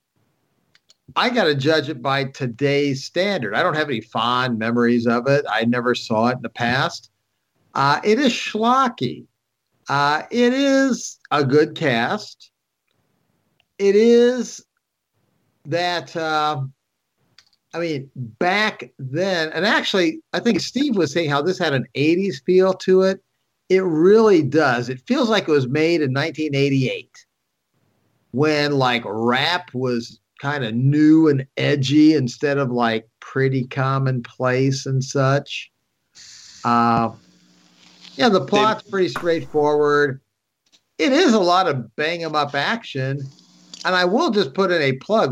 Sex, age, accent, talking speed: male, 50-69, American, 140 wpm